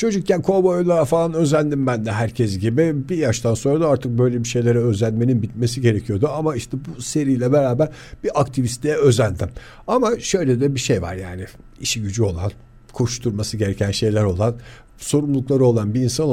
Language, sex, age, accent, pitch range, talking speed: Turkish, male, 50-69, native, 110-150 Hz, 165 wpm